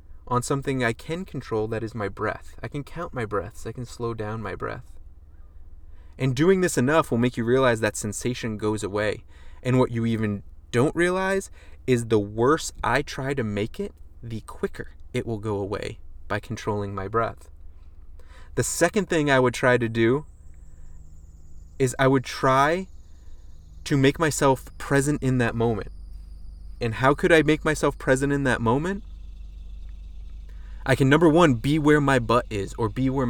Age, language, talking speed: 20-39, English, 175 wpm